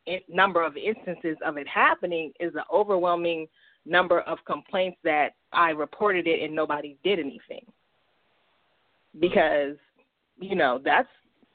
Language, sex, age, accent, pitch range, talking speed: English, female, 30-49, American, 160-200 Hz, 125 wpm